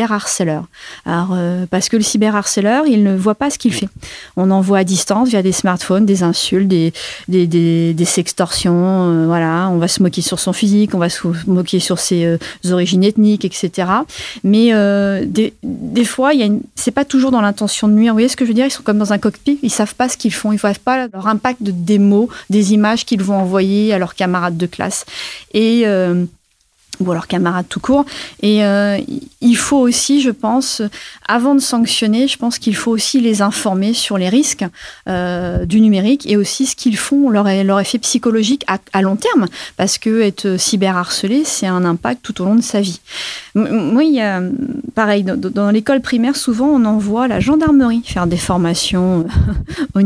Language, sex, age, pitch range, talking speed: French, female, 30-49, 185-240 Hz, 205 wpm